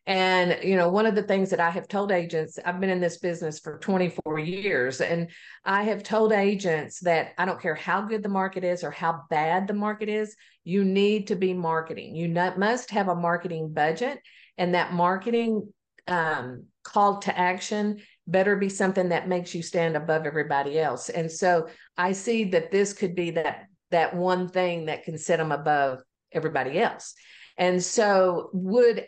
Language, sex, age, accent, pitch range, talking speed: English, female, 50-69, American, 165-205 Hz, 190 wpm